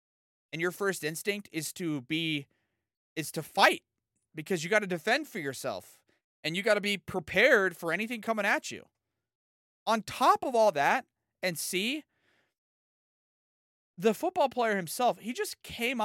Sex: male